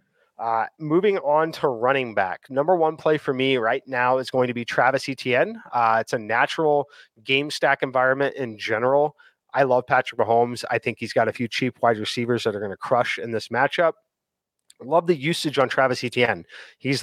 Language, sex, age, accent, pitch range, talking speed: English, male, 30-49, American, 125-150 Hz, 200 wpm